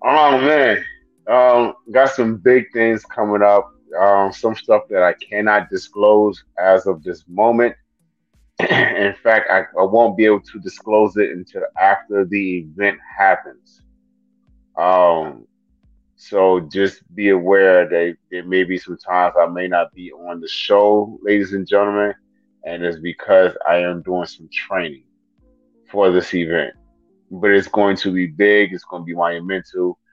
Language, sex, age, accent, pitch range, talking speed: English, male, 30-49, American, 90-105 Hz, 155 wpm